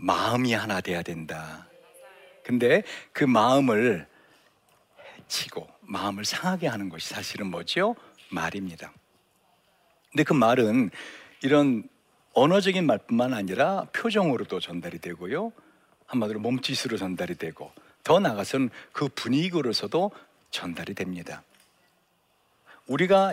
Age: 60-79